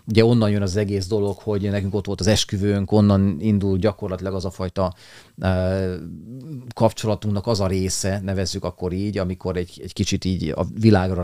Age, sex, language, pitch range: 30-49, male, Hungarian, 95-110 Hz